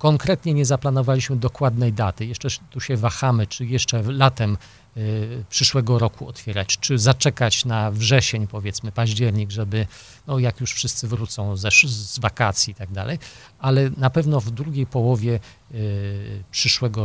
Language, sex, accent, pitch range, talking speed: Polish, male, native, 110-145 Hz, 135 wpm